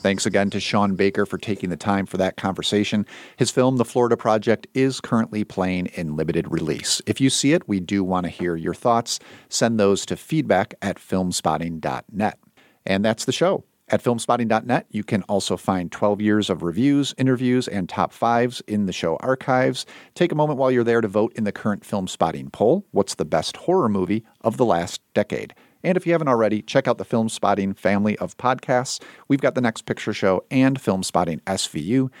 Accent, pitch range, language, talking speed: American, 95-125 Hz, English, 200 wpm